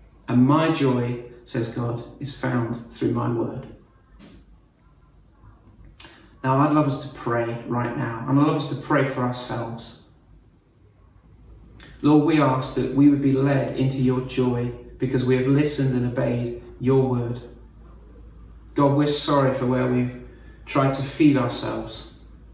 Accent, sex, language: British, male, English